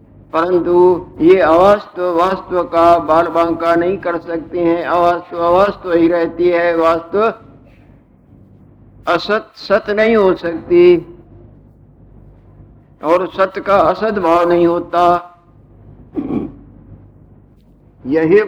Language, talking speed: Hindi, 100 wpm